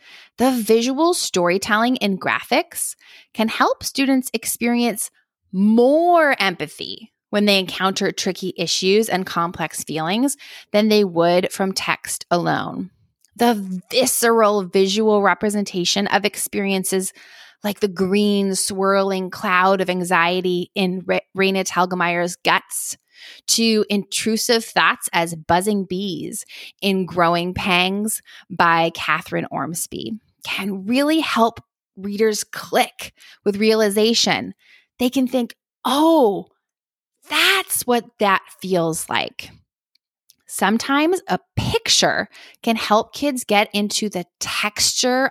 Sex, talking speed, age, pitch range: female, 105 wpm, 20-39, 185-240 Hz